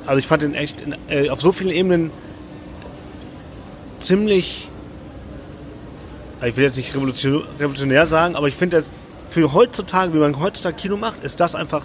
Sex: male